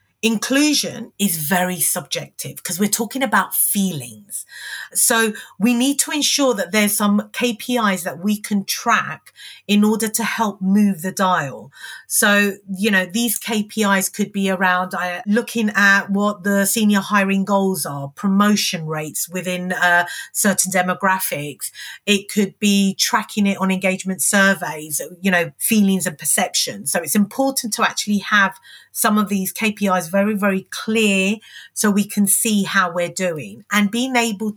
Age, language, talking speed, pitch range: 30-49, English, 155 wpm, 180-220 Hz